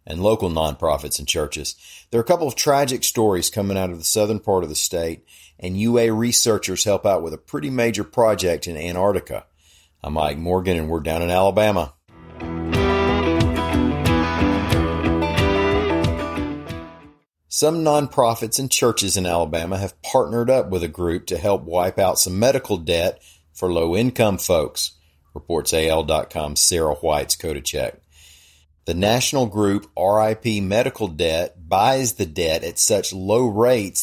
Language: English